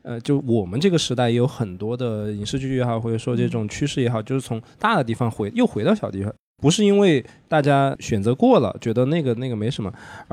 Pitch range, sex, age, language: 120-165 Hz, male, 20-39, Chinese